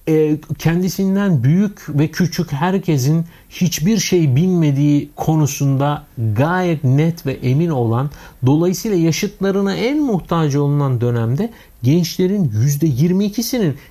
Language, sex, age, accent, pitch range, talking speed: Turkish, male, 60-79, native, 125-185 Hz, 95 wpm